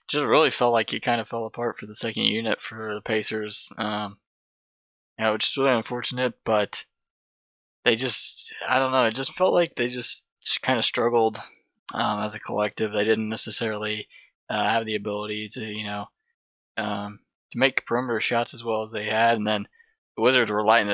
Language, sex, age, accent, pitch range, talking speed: English, male, 20-39, American, 105-120 Hz, 195 wpm